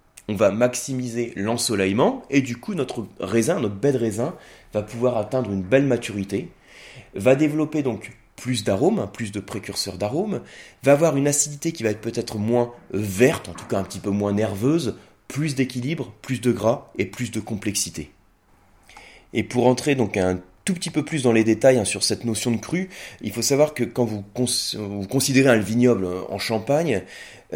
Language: French